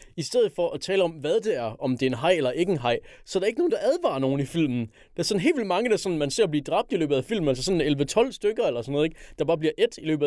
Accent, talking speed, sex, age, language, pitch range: native, 350 wpm, male, 20-39, Danish, 120-165 Hz